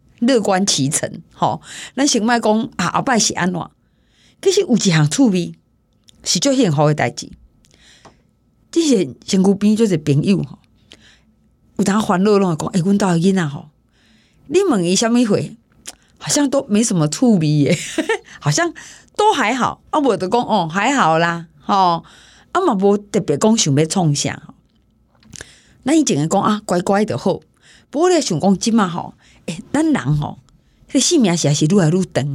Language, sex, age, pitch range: Chinese, female, 30-49, 175-260 Hz